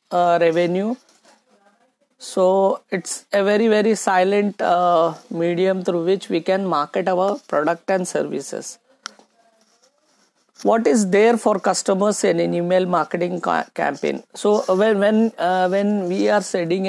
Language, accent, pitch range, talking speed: Hindi, native, 170-210 Hz, 135 wpm